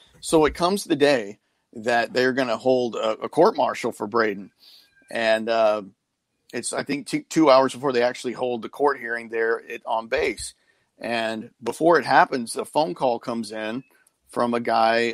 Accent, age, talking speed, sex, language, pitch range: American, 40-59, 180 wpm, male, English, 110-135 Hz